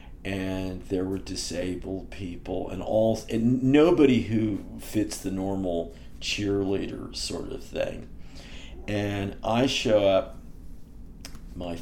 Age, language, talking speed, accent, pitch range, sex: 50-69, English, 110 wpm, American, 90-115 Hz, male